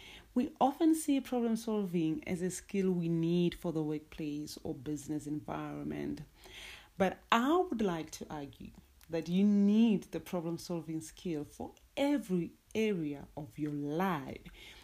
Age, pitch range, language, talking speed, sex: 30-49, 160-195 Hz, English, 140 wpm, female